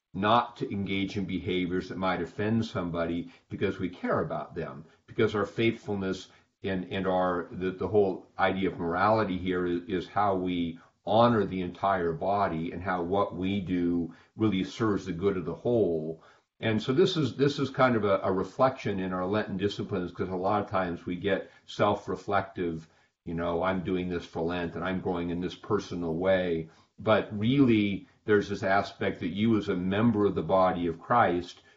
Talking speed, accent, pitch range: 185 wpm, American, 90-110 Hz